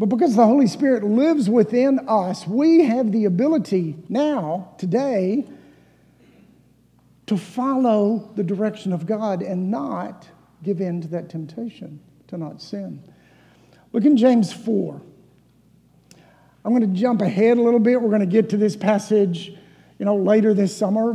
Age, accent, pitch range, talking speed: 50-69, American, 170-220 Hz, 155 wpm